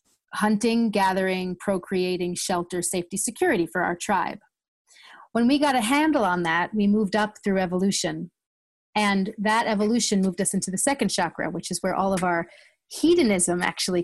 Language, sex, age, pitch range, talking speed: English, female, 30-49, 190-240 Hz, 160 wpm